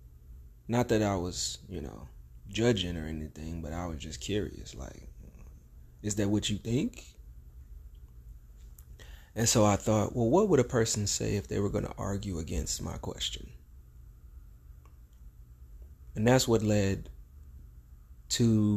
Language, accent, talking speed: English, American, 140 wpm